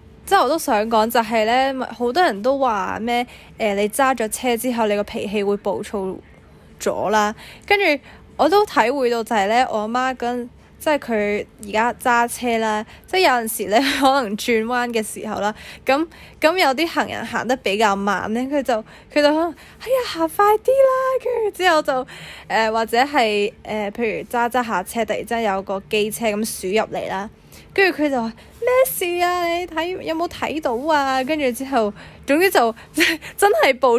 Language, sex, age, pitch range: Chinese, female, 10-29, 215-280 Hz